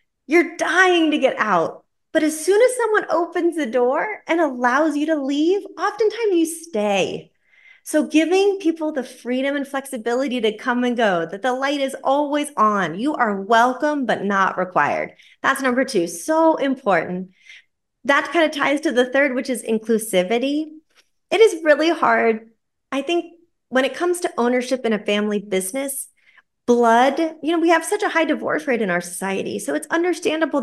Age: 30-49